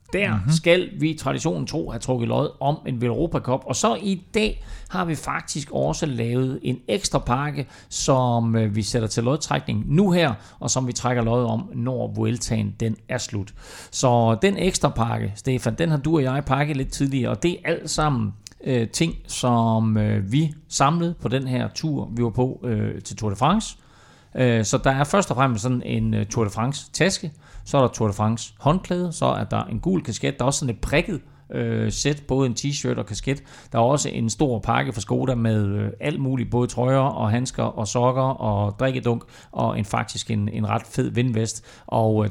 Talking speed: 210 wpm